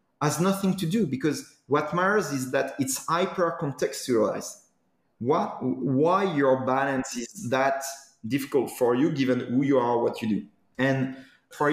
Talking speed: 155 wpm